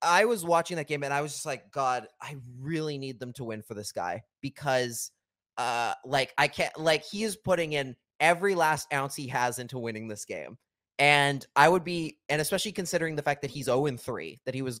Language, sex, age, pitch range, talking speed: English, male, 20-39, 125-160 Hz, 220 wpm